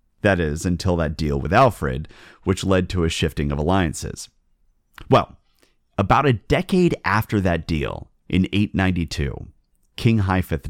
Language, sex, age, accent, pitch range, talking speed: English, male, 30-49, American, 80-105 Hz, 140 wpm